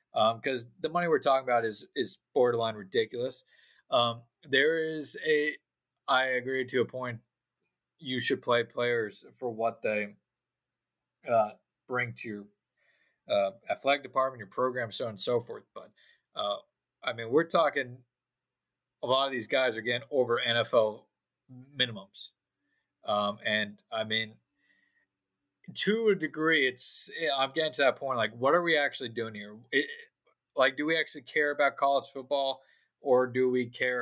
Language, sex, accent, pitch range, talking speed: English, male, American, 115-140 Hz, 160 wpm